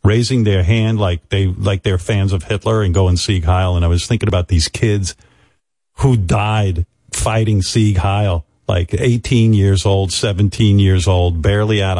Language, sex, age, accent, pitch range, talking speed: English, male, 50-69, American, 90-110 Hz, 175 wpm